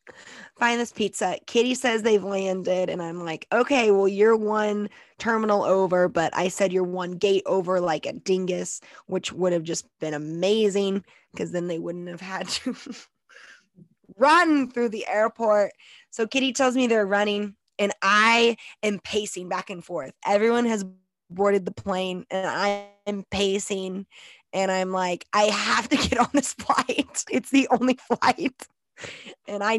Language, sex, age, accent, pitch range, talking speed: English, female, 20-39, American, 185-225 Hz, 165 wpm